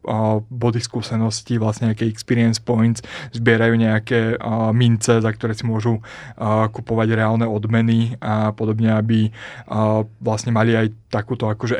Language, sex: Slovak, male